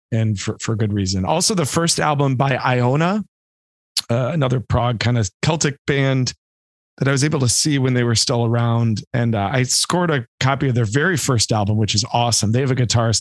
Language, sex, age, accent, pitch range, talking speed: English, male, 40-59, American, 105-145 Hz, 215 wpm